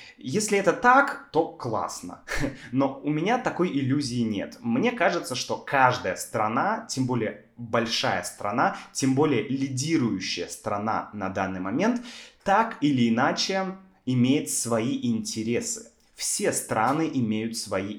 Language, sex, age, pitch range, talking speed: Russian, male, 20-39, 115-185 Hz, 125 wpm